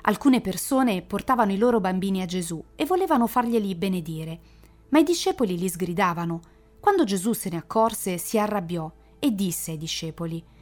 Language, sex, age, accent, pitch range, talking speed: Italian, female, 40-59, native, 170-215 Hz, 160 wpm